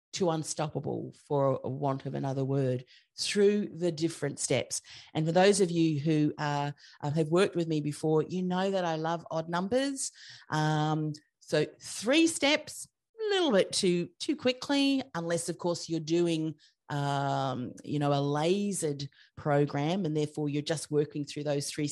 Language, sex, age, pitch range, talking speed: English, female, 40-59, 150-195 Hz, 160 wpm